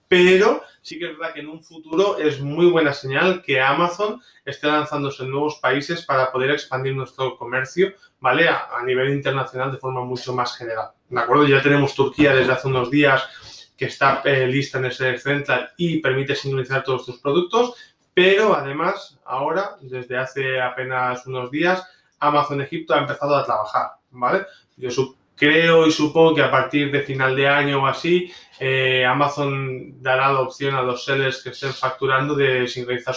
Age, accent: 20-39, Spanish